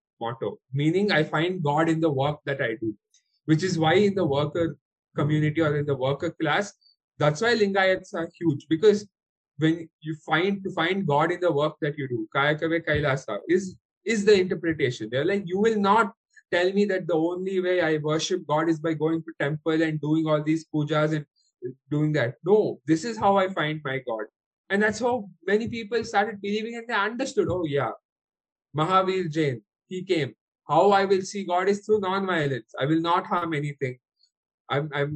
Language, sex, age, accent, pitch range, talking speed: English, male, 20-39, Indian, 150-200 Hz, 195 wpm